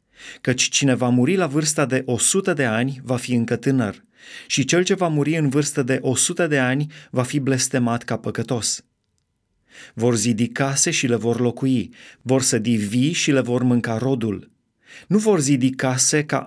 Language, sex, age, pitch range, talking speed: Romanian, male, 30-49, 120-145 Hz, 180 wpm